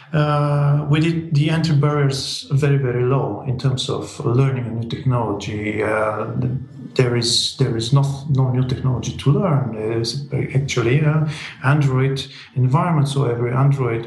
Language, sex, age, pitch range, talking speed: English, male, 40-59, 125-150 Hz, 145 wpm